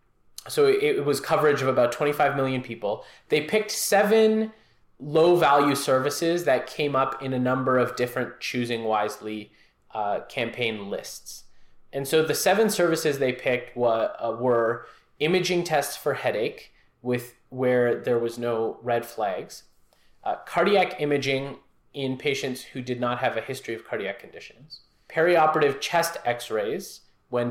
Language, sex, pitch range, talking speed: English, male, 120-155 Hz, 145 wpm